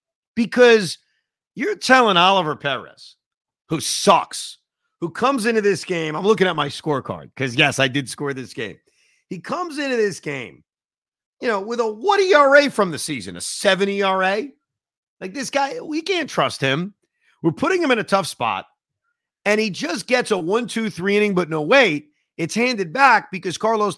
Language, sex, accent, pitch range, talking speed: English, male, American, 145-230 Hz, 180 wpm